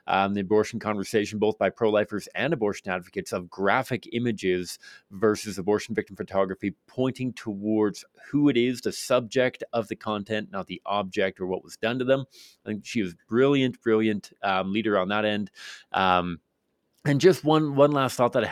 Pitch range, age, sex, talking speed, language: 100-130 Hz, 30-49, male, 180 wpm, English